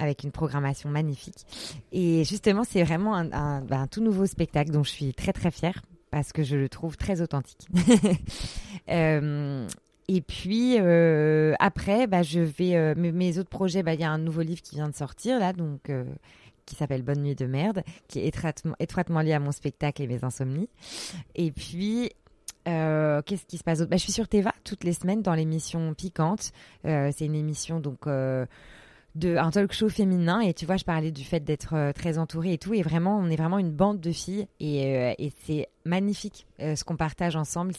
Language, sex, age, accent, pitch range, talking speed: French, female, 20-39, French, 145-185 Hz, 215 wpm